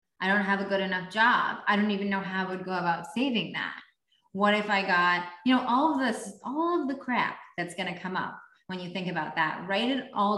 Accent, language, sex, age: American, English, female, 20-39